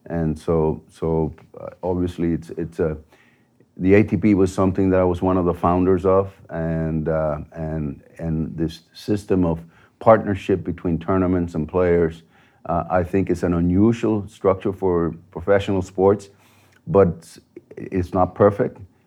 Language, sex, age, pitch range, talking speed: English, male, 50-69, 85-100 Hz, 140 wpm